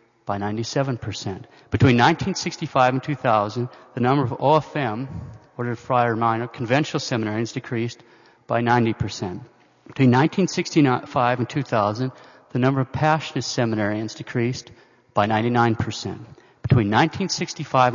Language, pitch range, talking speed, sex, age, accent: English, 110-135 Hz, 100 wpm, male, 40-59, American